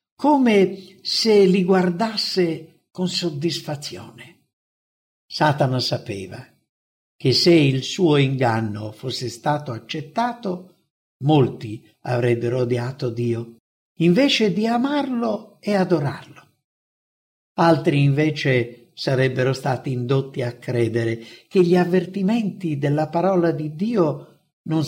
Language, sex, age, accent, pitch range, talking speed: English, male, 60-79, Italian, 125-180 Hz, 95 wpm